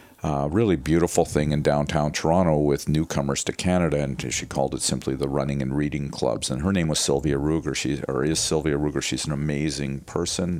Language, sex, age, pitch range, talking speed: English, male, 50-69, 70-80 Hz, 205 wpm